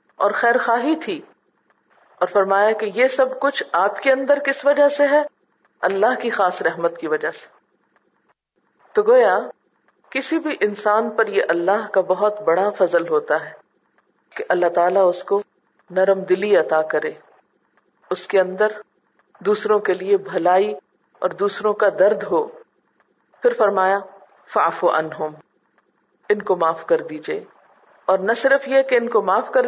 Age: 40-59